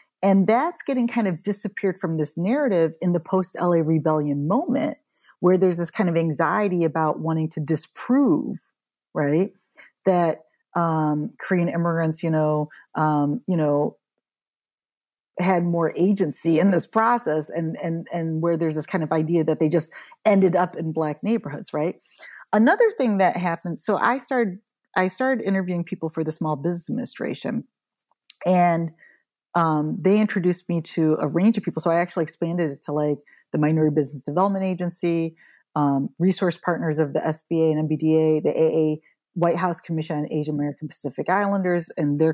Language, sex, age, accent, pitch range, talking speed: English, female, 40-59, American, 155-190 Hz, 165 wpm